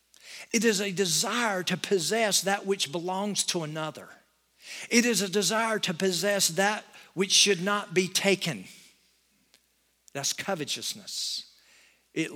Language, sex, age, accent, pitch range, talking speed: English, male, 50-69, American, 165-210 Hz, 125 wpm